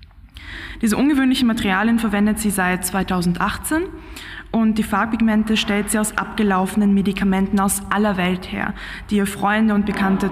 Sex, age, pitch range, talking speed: female, 20-39, 190-225 Hz, 140 wpm